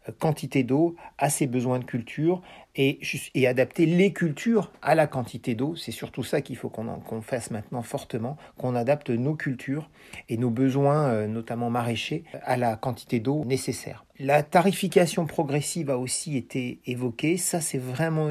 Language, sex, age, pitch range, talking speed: French, male, 40-59, 115-145 Hz, 165 wpm